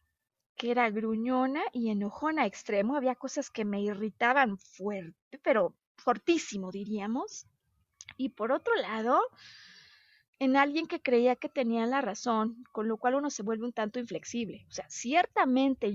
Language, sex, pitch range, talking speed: Spanish, female, 220-280 Hz, 145 wpm